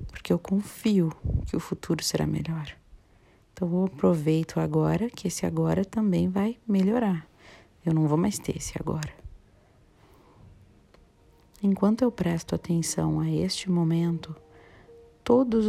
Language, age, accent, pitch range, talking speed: Portuguese, 40-59, Brazilian, 120-185 Hz, 125 wpm